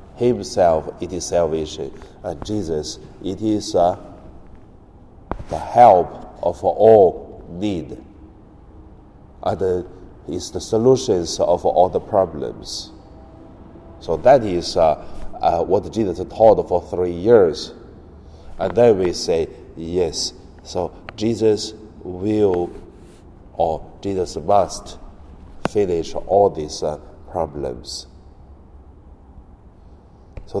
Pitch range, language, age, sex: 80-105 Hz, Chinese, 50-69, male